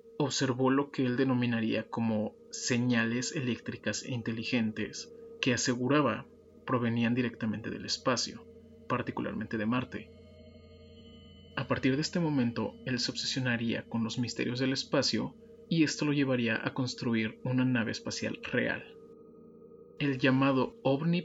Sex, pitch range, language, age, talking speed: male, 115-140 Hz, Spanish, 30-49, 125 wpm